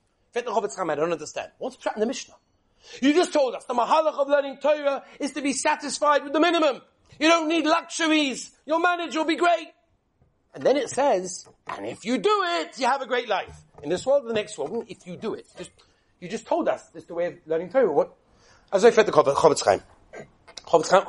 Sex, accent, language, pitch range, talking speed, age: male, British, English, 235-305 Hz, 220 wpm, 40-59